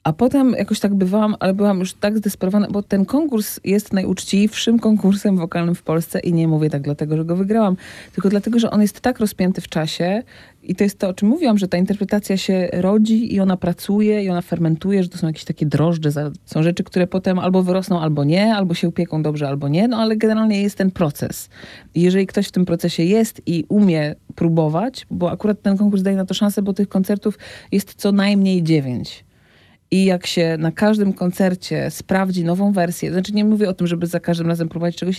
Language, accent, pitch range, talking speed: Polish, native, 170-205 Hz, 210 wpm